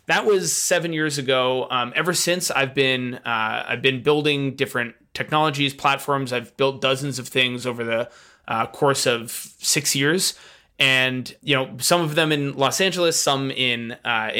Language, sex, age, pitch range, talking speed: English, male, 20-39, 125-150 Hz, 170 wpm